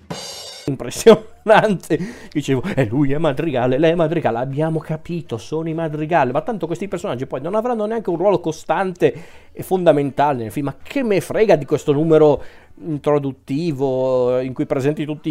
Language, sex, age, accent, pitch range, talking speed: Italian, male, 40-59, native, 120-165 Hz, 165 wpm